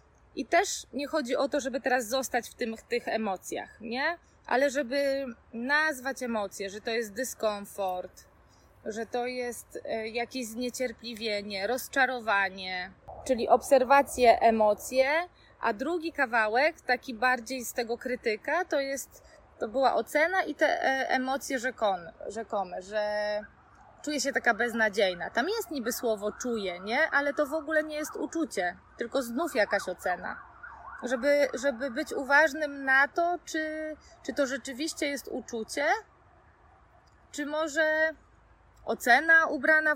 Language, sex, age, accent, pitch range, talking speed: Polish, female, 20-39, native, 225-290 Hz, 130 wpm